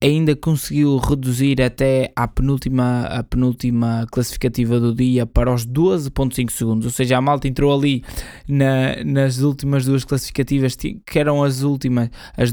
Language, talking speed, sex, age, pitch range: Portuguese, 135 wpm, male, 20-39, 115-135 Hz